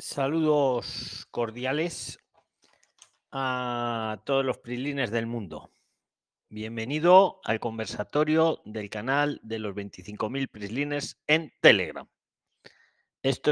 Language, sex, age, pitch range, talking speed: Spanish, male, 40-59, 110-150 Hz, 90 wpm